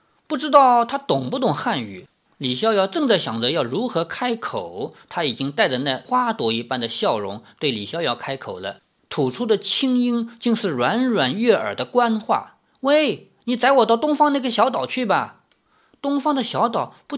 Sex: male